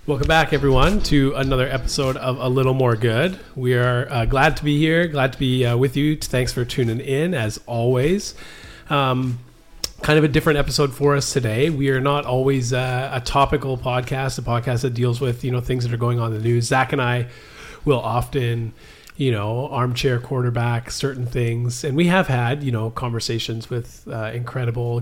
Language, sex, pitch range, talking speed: English, male, 120-140 Hz, 200 wpm